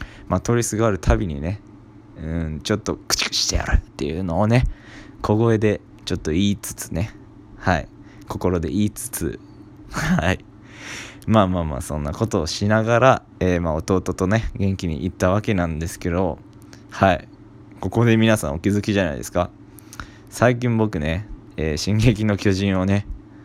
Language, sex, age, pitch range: Japanese, male, 20-39, 85-105 Hz